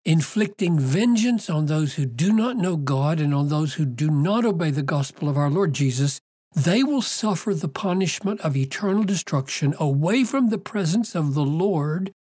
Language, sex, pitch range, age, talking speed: English, male, 135-195 Hz, 60-79, 180 wpm